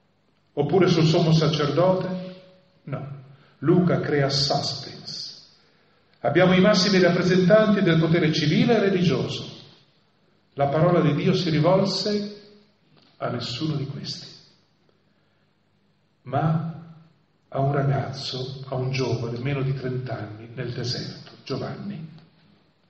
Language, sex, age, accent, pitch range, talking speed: Italian, male, 40-59, native, 135-180 Hz, 110 wpm